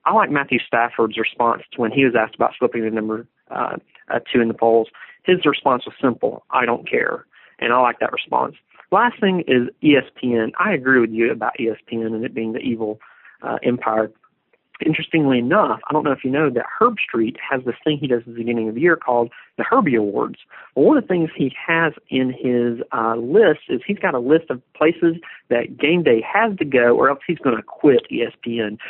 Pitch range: 120-165 Hz